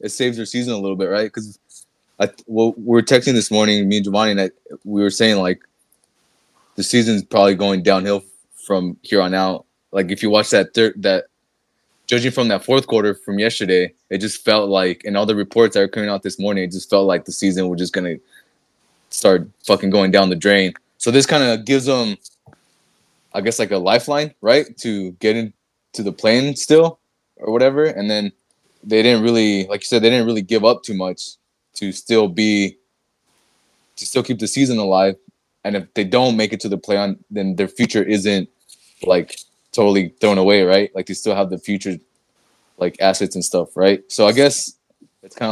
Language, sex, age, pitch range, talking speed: English, male, 20-39, 95-115 Hz, 205 wpm